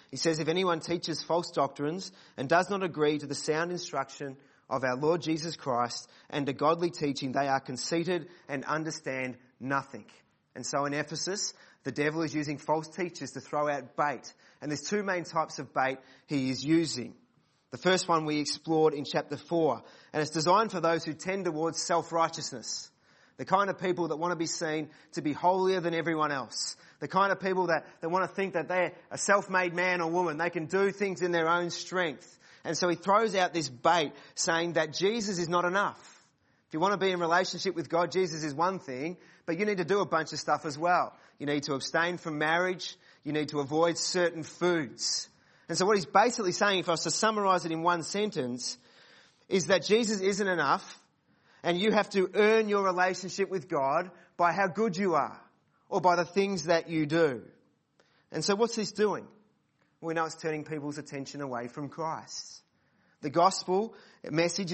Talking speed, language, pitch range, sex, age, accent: 200 wpm, English, 150-185 Hz, male, 30-49, Australian